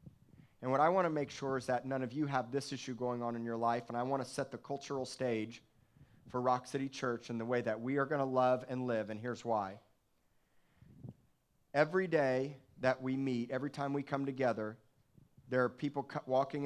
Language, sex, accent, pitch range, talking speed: English, male, American, 120-140 Hz, 215 wpm